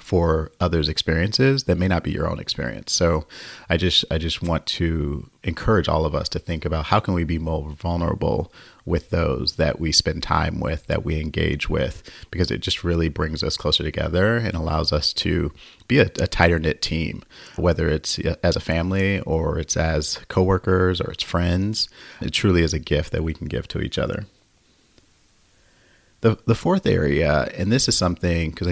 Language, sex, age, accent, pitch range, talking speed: English, male, 30-49, American, 80-95 Hz, 190 wpm